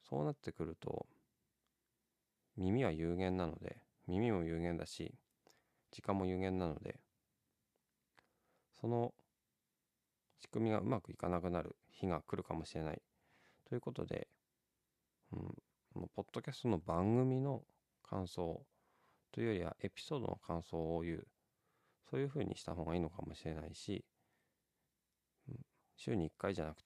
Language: Japanese